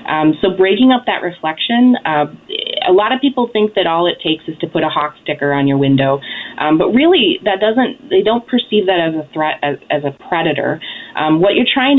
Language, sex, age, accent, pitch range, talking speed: English, female, 30-49, American, 145-195 Hz, 220 wpm